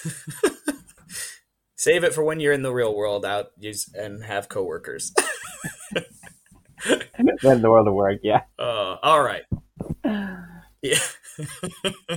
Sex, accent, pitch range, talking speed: male, American, 115-165 Hz, 115 wpm